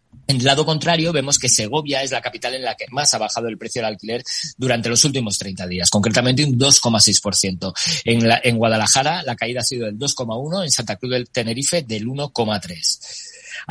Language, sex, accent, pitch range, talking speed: Spanish, male, Spanish, 115-140 Hz, 195 wpm